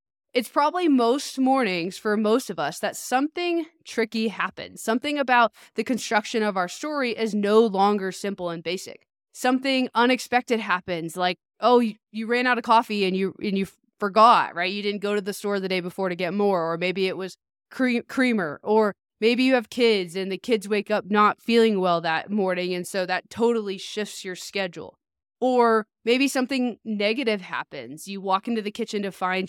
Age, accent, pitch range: 20-39, American, 185-225 Hz